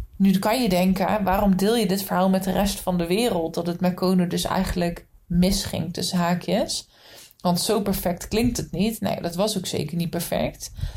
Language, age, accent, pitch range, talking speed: Dutch, 20-39, Dutch, 180-215 Hz, 200 wpm